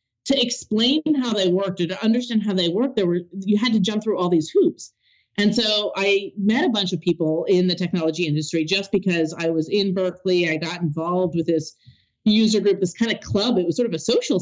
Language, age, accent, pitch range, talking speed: English, 30-49, American, 180-245 Hz, 235 wpm